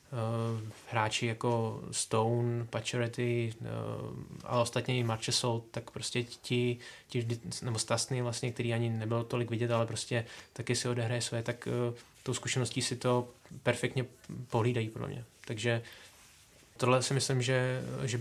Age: 20-39